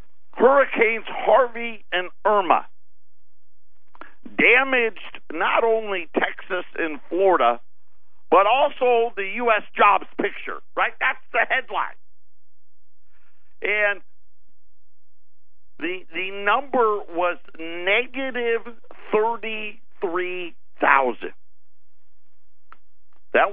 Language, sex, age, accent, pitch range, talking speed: English, male, 50-69, American, 145-230 Hz, 70 wpm